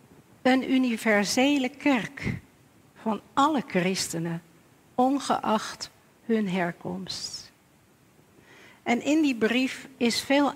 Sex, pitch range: female, 195-255 Hz